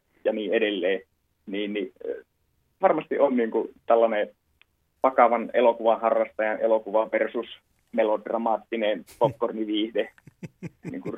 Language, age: Finnish, 30-49